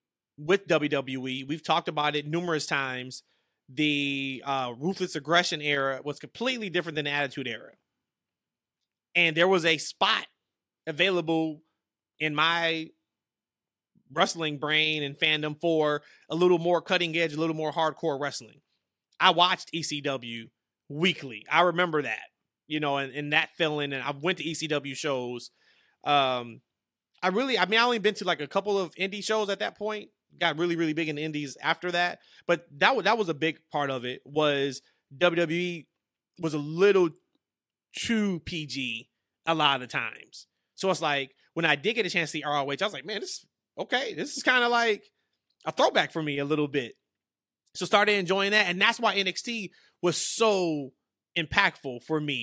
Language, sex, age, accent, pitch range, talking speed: English, male, 30-49, American, 145-180 Hz, 175 wpm